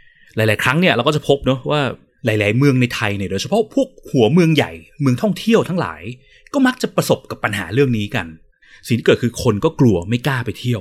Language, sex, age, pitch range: Thai, male, 30-49, 110-180 Hz